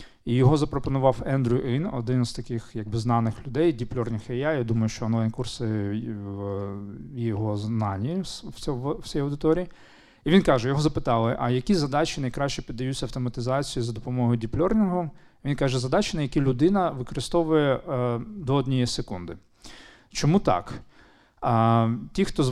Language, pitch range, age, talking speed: Ukrainian, 120-150 Hz, 40-59, 145 wpm